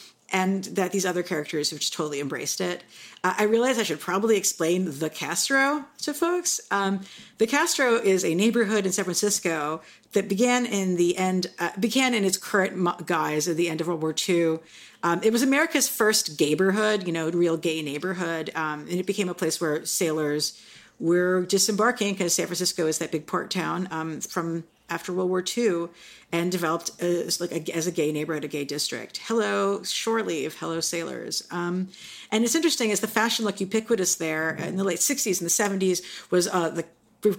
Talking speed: 195 wpm